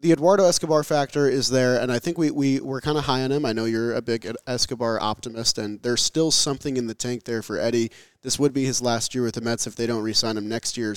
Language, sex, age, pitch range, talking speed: English, male, 20-39, 115-145 Hz, 280 wpm